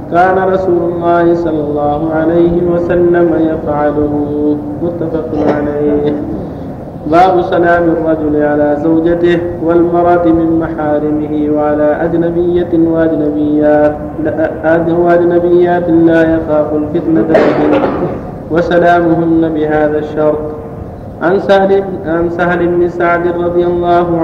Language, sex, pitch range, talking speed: Arabic, male, 155-175 Hz, 85 wpm